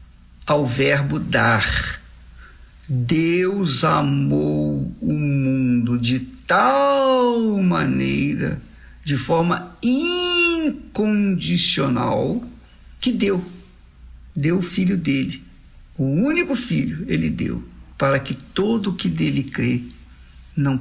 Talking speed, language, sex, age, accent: 90 wpm, Portuguese, male, 60-79, Brazilian